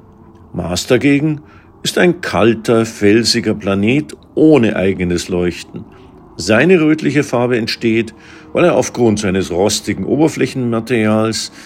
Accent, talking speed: German, 105 wpm